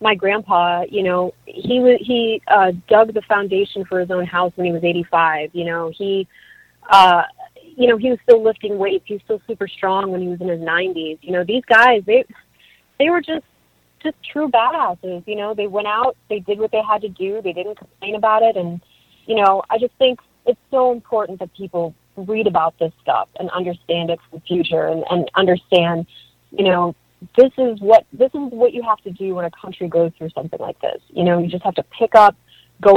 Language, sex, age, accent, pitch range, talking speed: English, female, 30-49, American, 175-215 Hz, 220 wpm